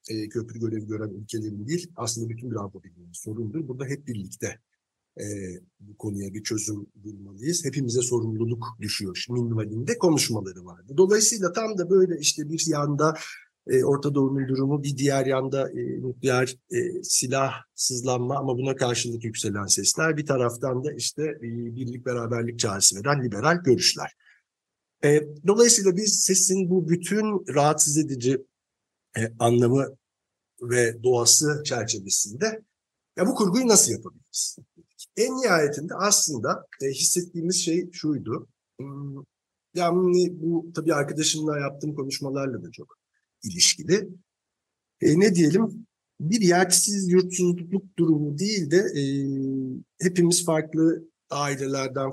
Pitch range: 120-165 Hz